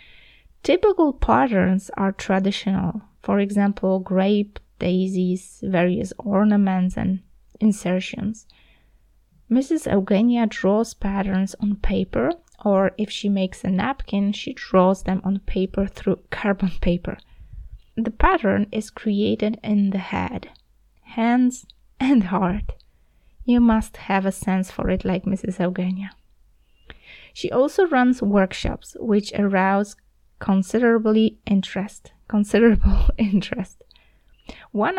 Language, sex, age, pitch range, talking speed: Polish, female, 20-39, 190-220 Hz, 110 wpm